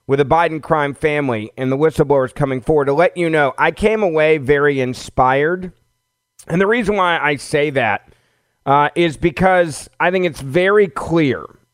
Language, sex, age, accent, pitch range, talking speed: English, male, 40-59, American, 125-170 Hz, 175 wpm